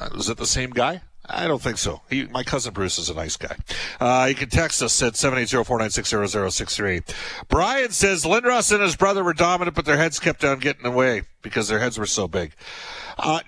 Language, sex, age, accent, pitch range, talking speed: English, male, 50-69, American, 110-150 Hz, 210 wpm